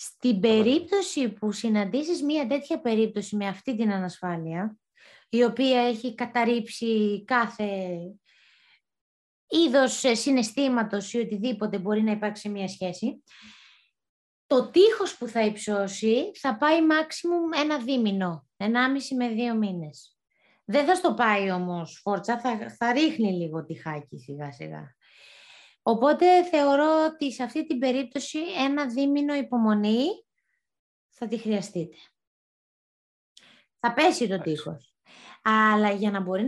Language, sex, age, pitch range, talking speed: Greek, female, 20-39, 205-270 Hz, 120 wpm